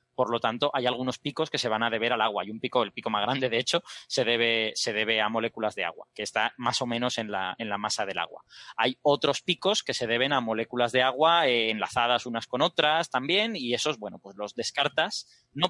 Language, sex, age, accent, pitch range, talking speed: Spanish, male, 20-39, Spanish, 120-150 Hz, 250 wpm